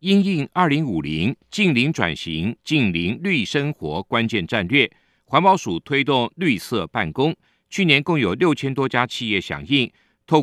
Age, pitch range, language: 50-69, 110-150 Hz, Chinese